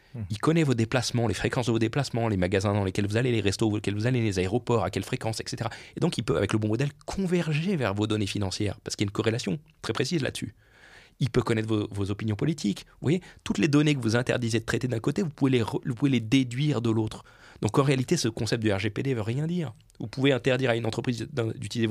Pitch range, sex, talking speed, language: 105-135 Hz, male, 260 wpm, French